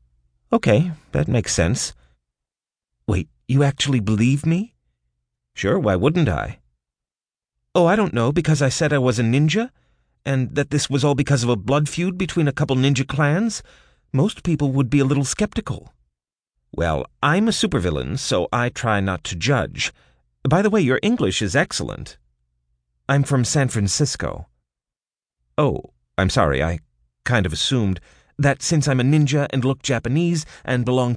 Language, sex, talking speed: English, male, 160 wpm